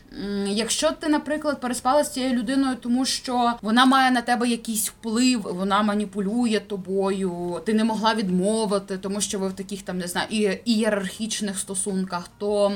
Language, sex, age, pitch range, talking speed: Ukrainian, female, 20-39, 185-220 Hz, 155 wpm